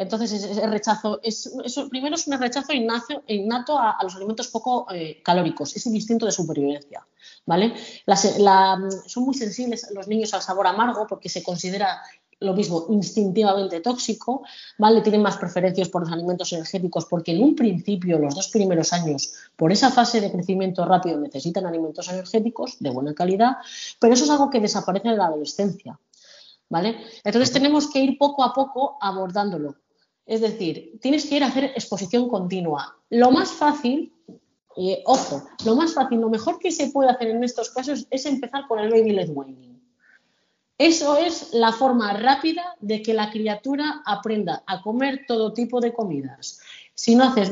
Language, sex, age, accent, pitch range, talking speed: Spanish, female, 20-39, Spanish, 185-250 Hz, 175 wpm